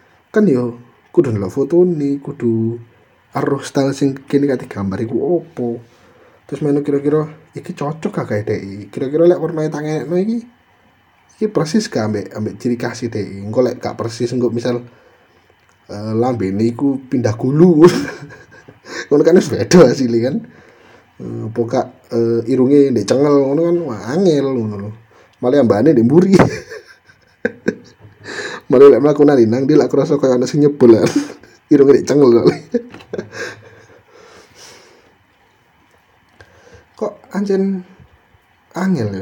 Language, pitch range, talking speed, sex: Indonesian, 115-155 Hz, 110 wpm, male